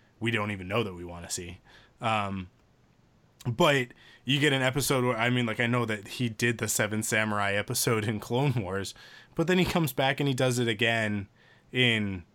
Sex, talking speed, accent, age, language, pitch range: male, 205 wpm, American, 20-39, English, 100-125 Hz